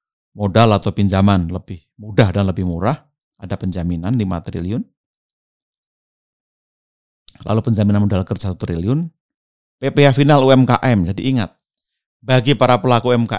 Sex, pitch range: male, 95-130 Hz